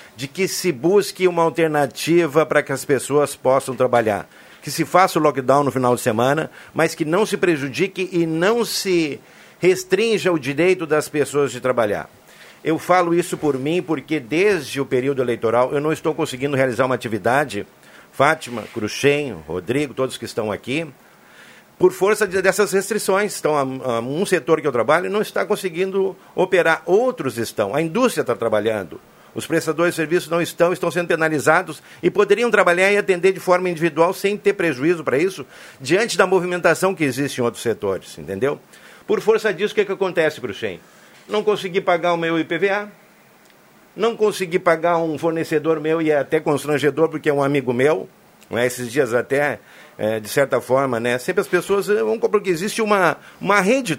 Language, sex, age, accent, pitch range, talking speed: Portuguese, male, 50-69, Brazilian, 140-190 Hz, 180 wpm